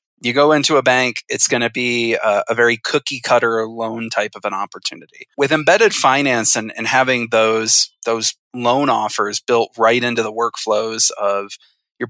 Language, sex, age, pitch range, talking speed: English, male, 30-49, 110-130 Hz, 170 wpm